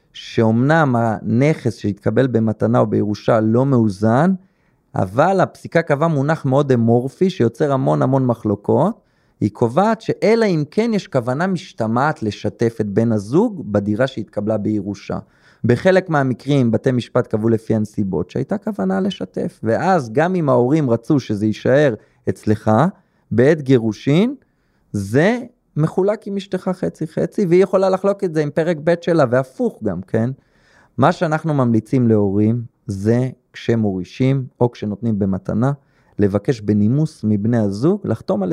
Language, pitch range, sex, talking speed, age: Hebrew, 110-175 Hz, male, 130 wpm, 30-49